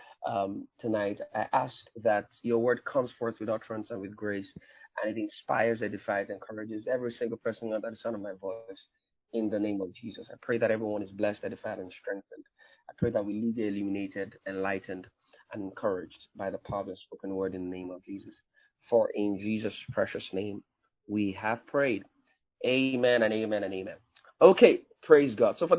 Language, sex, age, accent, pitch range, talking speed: English, male, 30-49, Jamaican, 100-125 Hz, 190 wpm